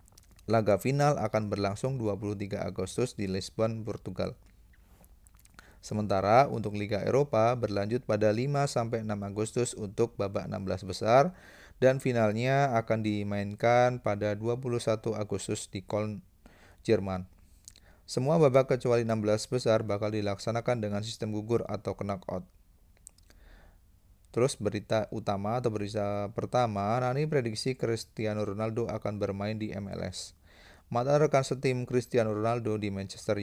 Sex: male